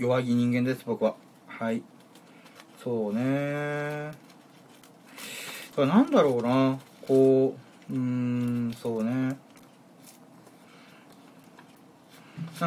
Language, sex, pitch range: Japanese, male, 120-205 Hz